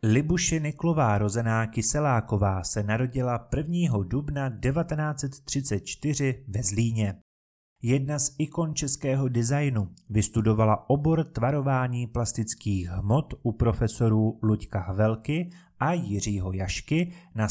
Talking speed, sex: 100 wpm, male